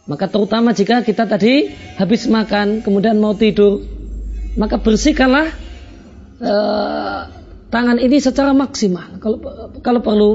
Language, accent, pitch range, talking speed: Indonesian, native, 160-230 Hz, 115 wpm